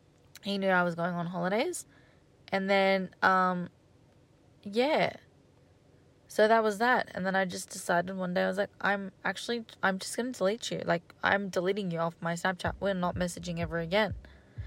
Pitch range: 155-205 Hz